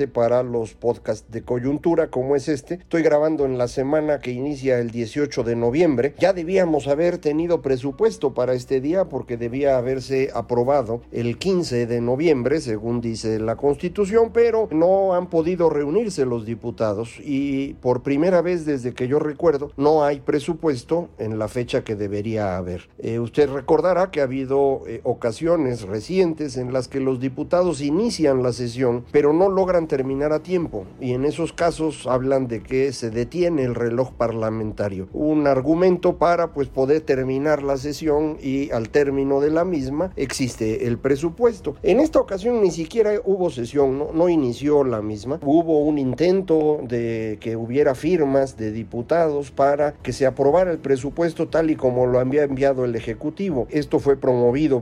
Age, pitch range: 50-69, 120-155 Hz